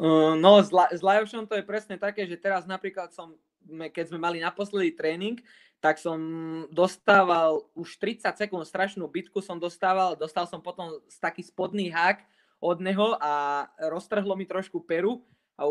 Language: Czech